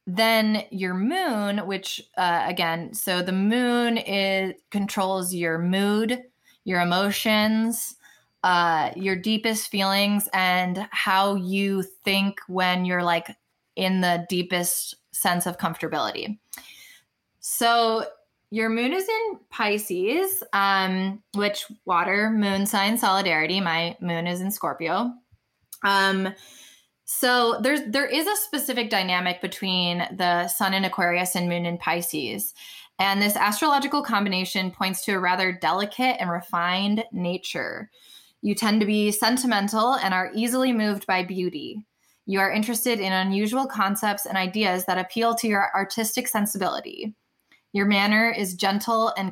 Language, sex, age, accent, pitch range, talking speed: English, female, 20-39, American, 185-225 Hz, 130 wpm